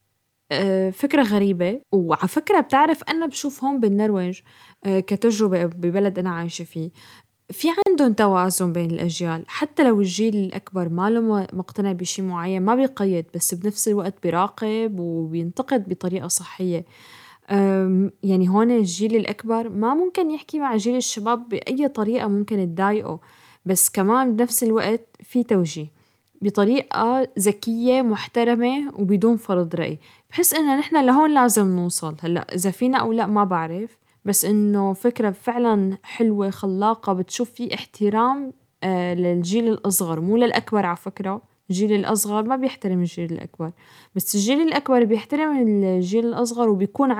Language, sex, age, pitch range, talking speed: Arabic, female, 10-29, 185-240 Hz, 130 wpm